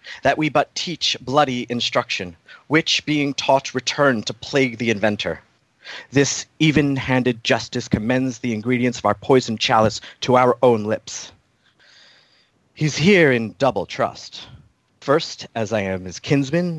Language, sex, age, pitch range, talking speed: English, male, 30-49, 115-145 Hz, 140 wpm